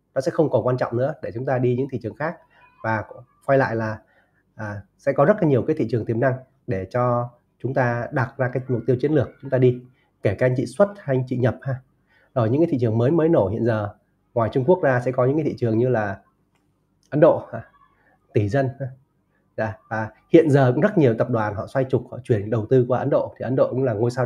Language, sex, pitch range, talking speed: Vietnamese, male, 115-135 Hz, 265 wpm